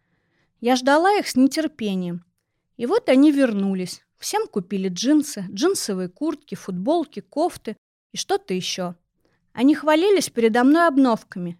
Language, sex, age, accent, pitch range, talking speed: Russian, female, 20-39, native, 190-285 Hz, 125 wpm